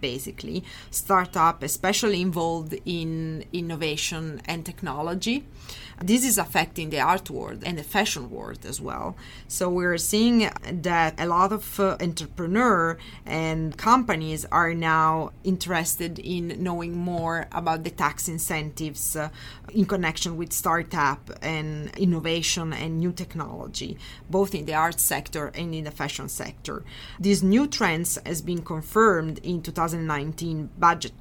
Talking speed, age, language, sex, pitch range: 140 wpm, 30-49, English, female, 155-180 Hz